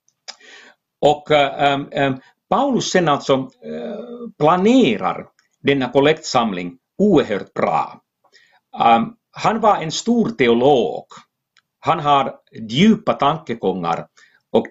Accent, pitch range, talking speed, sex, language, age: Finnish, 125-200 Hz, 95 wpm, male, Swedish, 60-79